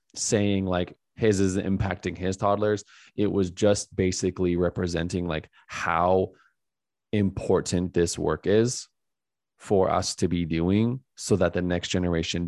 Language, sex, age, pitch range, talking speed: English, male, 20-39, 85-100 Hz, 135 wpm